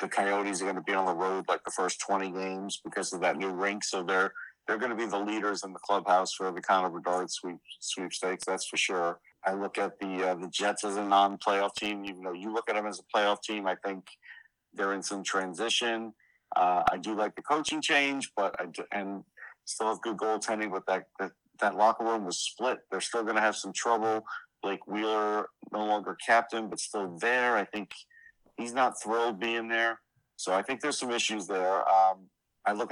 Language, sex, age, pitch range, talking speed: English, male, 50-69, 95-110 Hz, 225 wpm